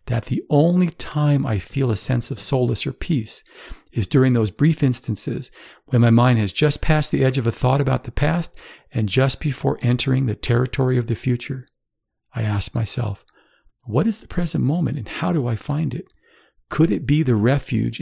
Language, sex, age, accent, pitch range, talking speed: English, male, 50-69, American, 110-135 Hz, 195 wpm